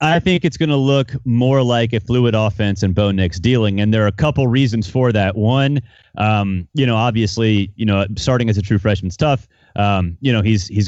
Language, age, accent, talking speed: English, 30-49, American, 230 wpm